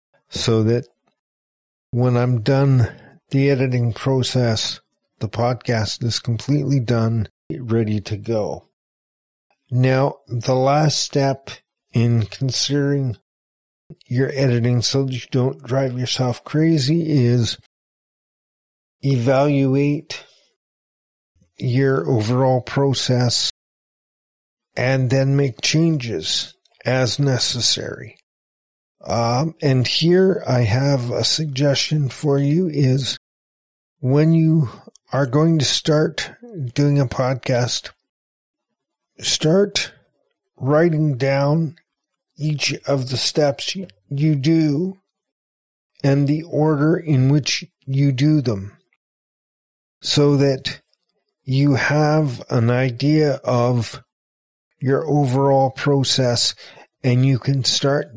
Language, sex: English, male